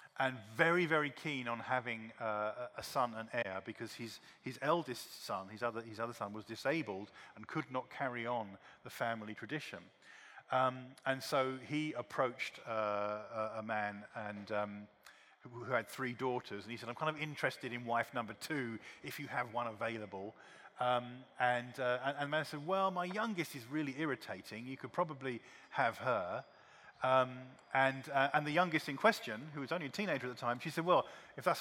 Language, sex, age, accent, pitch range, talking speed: English, male, 40-59, British, 115-150 Hz, 190 wpm